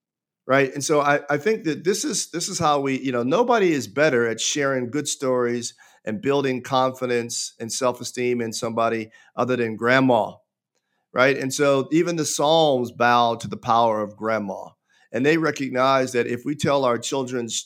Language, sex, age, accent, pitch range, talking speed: English, male, 50-69, American, 120-155 Hz, 180 wpm